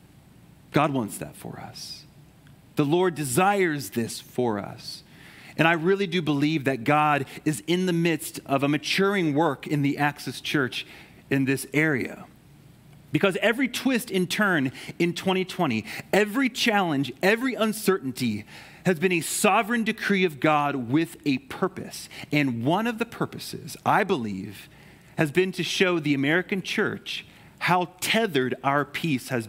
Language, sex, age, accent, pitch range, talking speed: English, male, 40-59, American, 135-180 Hz, 150 wpm